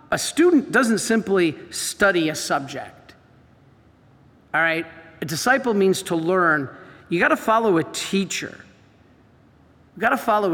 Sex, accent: male, American